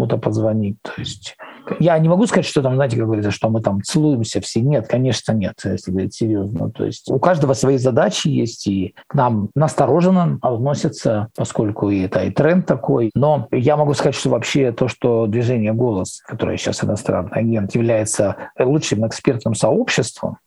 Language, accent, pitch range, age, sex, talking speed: Russian, native, 110-145 Hz, 50-69, male, 170 wpm